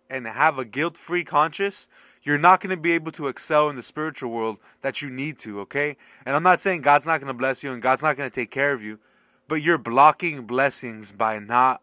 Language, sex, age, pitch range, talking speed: English, male, 20-39, 130-170 Hz, 240 wpm